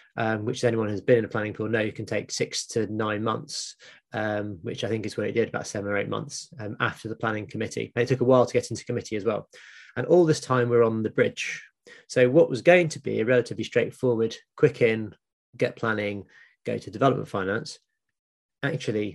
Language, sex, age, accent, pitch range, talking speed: English, male, 20-39, British, 110-130 Hz, 225 wpm